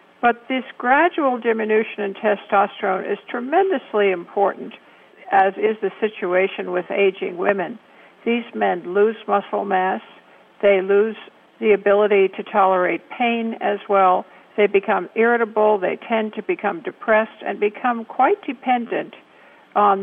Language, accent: English, American